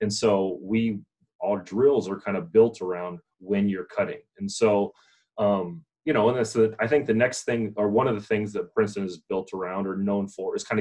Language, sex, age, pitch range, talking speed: English, male, 30-49, 100-115 Hz, 220 wpm